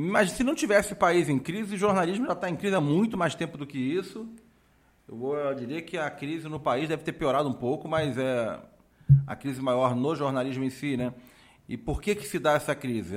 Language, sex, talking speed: Portuguese, male, 230 wpm